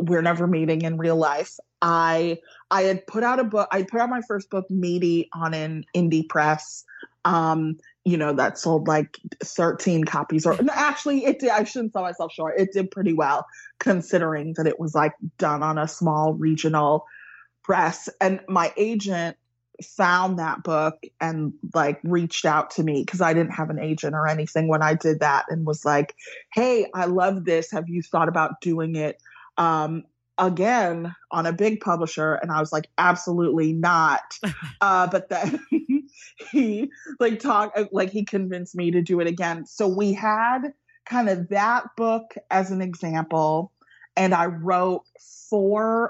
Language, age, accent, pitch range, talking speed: English, 30-49, American, 160-200 Hz, 175 wpm